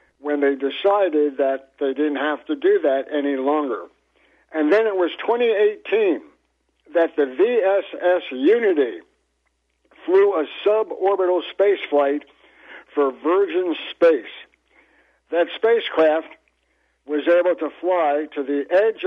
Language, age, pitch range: English, 60-79, 150-200 Hz